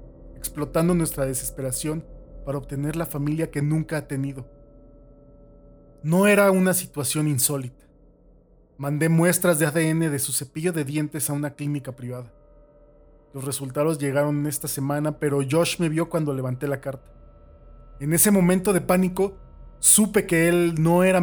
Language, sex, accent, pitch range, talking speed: Spanish, male, Mexican, 125-175 Hz, 145 wpm